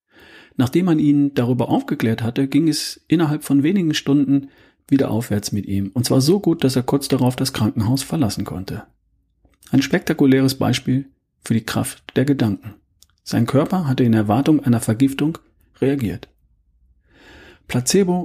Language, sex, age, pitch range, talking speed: German, male, 40-59, 110-140 Hz, 150 wpm